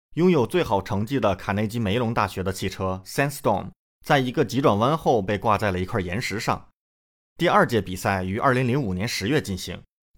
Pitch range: 95-130 Hz